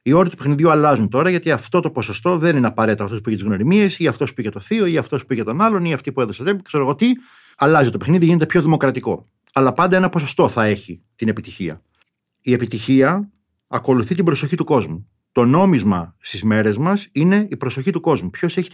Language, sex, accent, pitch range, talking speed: Greek, male, native, 110-185 Hz, 220 wpm